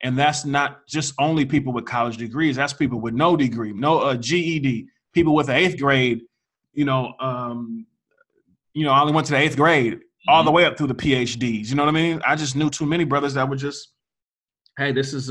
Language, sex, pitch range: English, male, 125-150 Hz